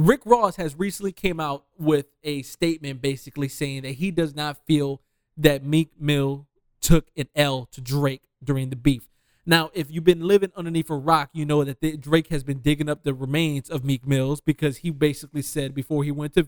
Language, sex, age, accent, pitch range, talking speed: English, male, 20-39, American, 140-170 Hz, 205 wpm